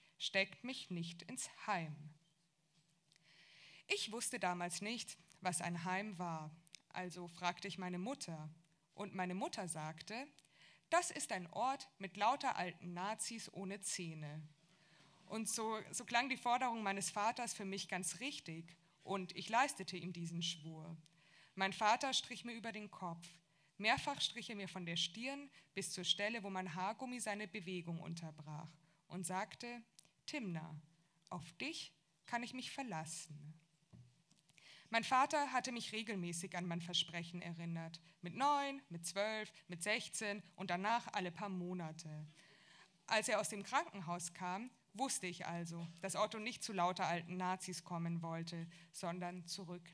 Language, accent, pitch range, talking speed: German, German, 165-215 Hz, 145 wpm